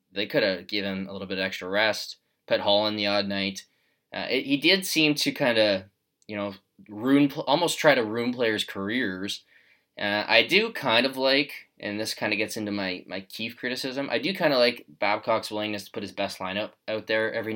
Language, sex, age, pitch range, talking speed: English, male, 20-39, 100-125 Hz, 220 wpm